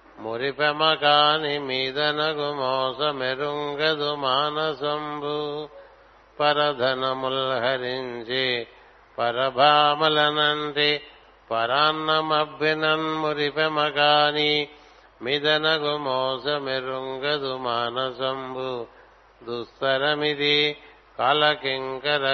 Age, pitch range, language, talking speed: 50-69, 130-150 Hz, Telugu, 40 wpm